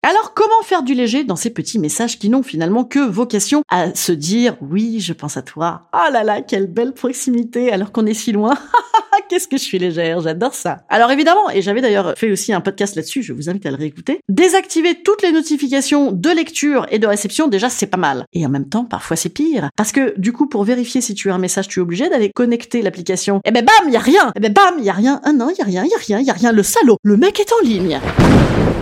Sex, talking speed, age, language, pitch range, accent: female, 255 wpm, 30-49, French, 185-280 Hz, French